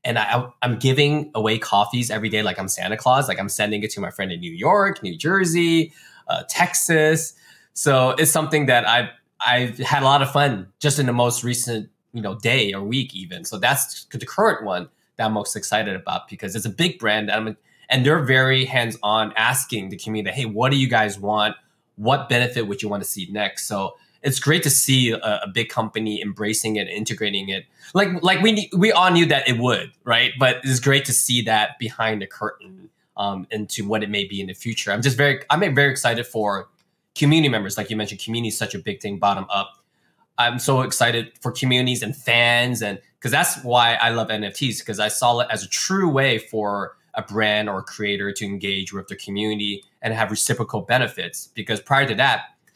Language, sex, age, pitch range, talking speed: English, male, 20-39, 105-140 Hz, 215 wpm